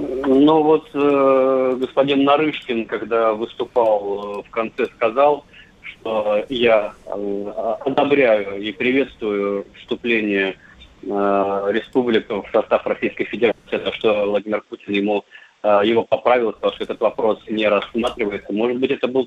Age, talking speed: 30-49, 130 wpm